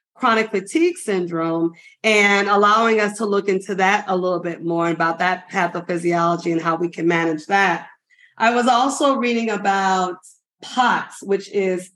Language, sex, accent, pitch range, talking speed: English, female, American, 190-220 Hz, 155 wpm